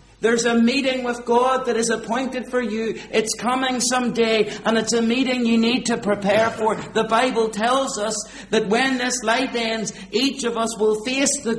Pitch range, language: 140-225 Hz, English